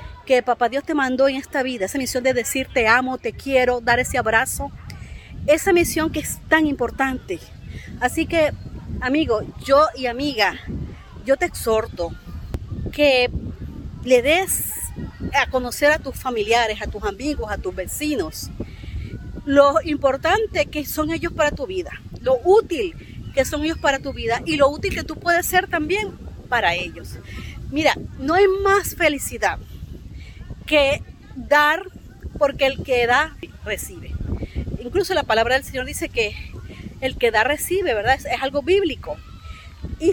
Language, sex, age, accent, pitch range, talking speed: Spanish, female, 40-59, American, 250-320 Hz, 155 wpm